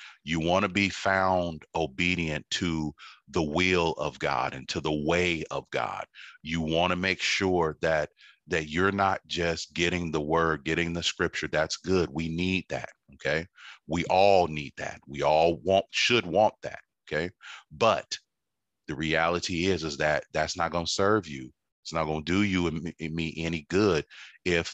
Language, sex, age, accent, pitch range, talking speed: English, male, 30-49, American, 80-90 Hz, 180 wpm